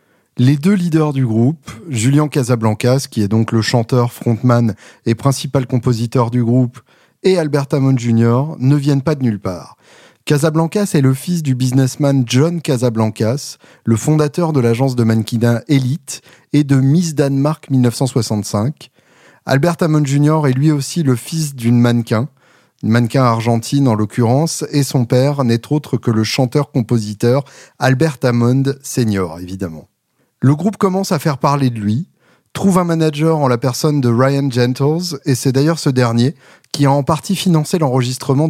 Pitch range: 120-150 Hz